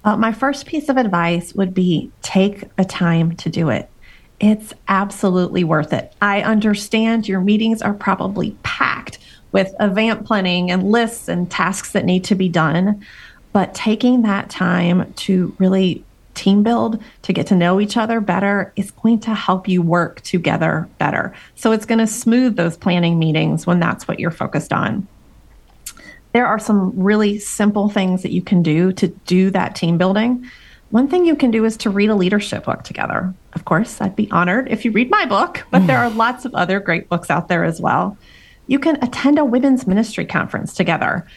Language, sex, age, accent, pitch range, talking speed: English, female, 30-49, American, 185-235 Hz, 190 wpm